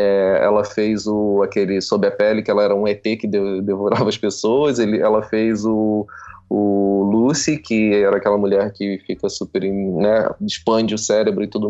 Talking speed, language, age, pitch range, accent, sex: 180 wpm, Portuguese, 20-39, 105-130 Hz, Brazilian, male